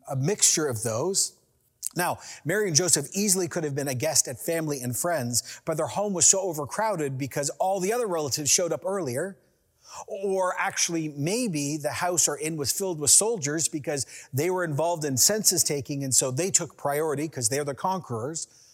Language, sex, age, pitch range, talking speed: English, male, 40-59, 125-185 Hz, 190 wpm